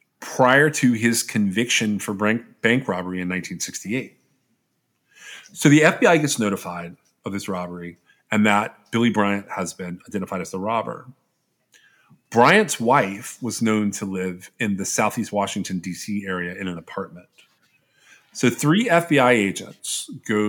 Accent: American